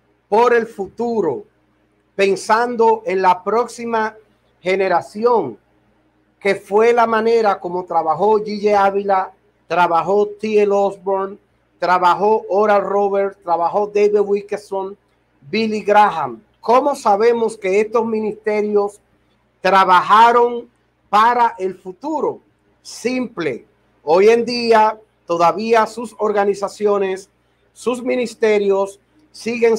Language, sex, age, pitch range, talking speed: Spanish, male, 40-59, 195-230 Hz, 95 wpm